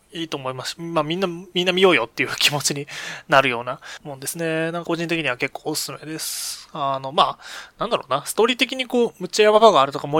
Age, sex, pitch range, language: 20-39, male, 135-180 Hz, Japanese